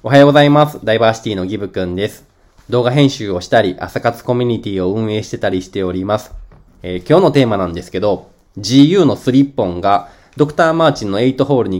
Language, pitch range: Japanese, 90-135 Hz